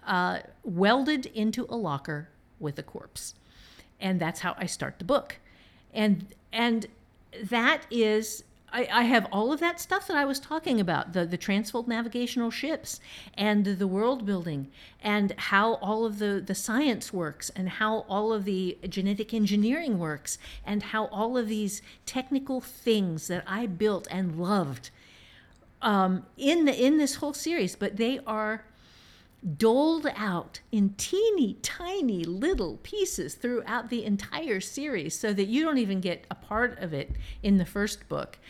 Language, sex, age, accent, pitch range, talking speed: English, female, 50-69, American, 190-245 Hz, 160 wpm